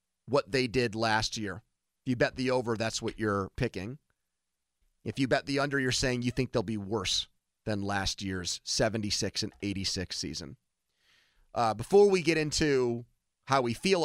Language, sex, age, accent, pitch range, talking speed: English, male, 30-49, American, 105-145 Hz, 175 wpm